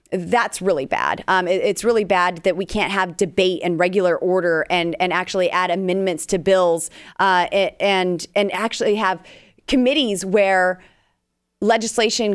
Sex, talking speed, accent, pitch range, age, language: female, 150 wpm, American, 180-220 Hz, 30-49, English